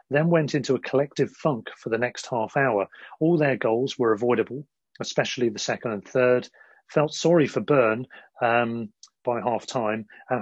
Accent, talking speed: British, 175 wpm